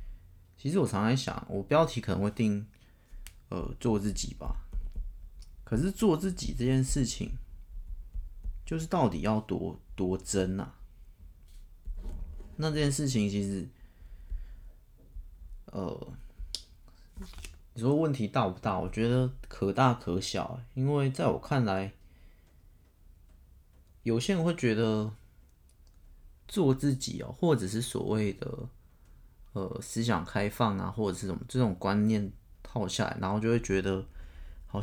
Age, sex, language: 30-49, male, Chinese